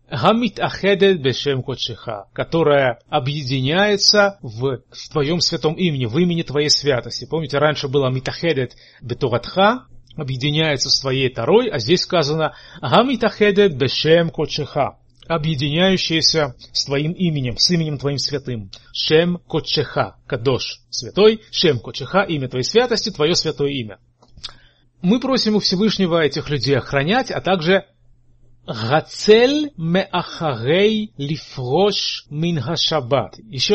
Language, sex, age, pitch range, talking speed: Russian, male, 30-49, 135-185 Hz, 100 wpm